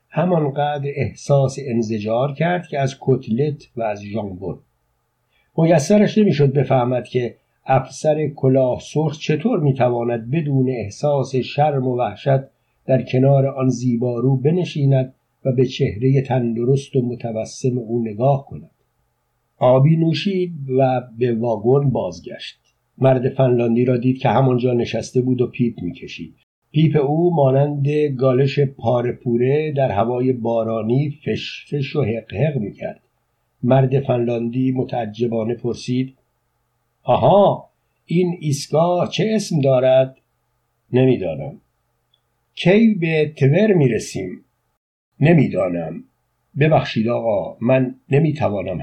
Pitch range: 120-145 Hz